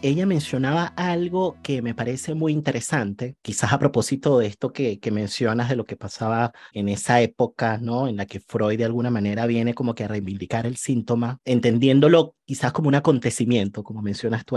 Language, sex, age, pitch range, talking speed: Spanish, male, 30-49, 115-150 Hz, 190 wpm